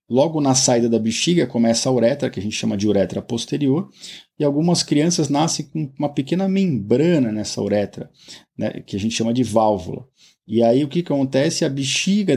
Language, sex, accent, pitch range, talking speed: Portuguese, male, Brazilian, 115-155 Hz, 190 wpm